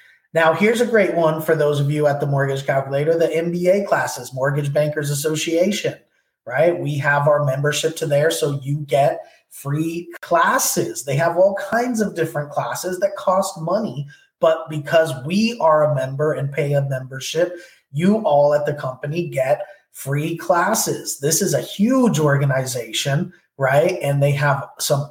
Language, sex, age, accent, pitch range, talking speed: English, male, 20-39, American, 145-175 Hz, 165 wpm